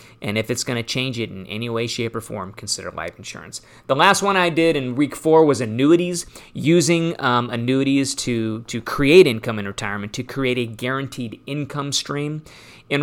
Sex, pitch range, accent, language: male, 115-145 Hz, American, English